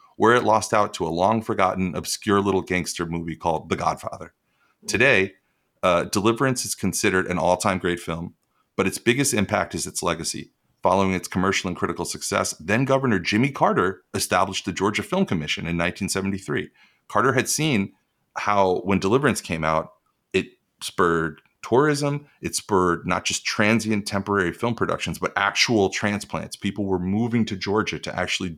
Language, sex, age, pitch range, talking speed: English, male, 30-49, 85-110 Hz, 160 wpm